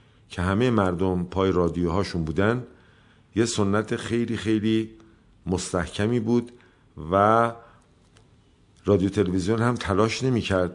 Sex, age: male, 50-69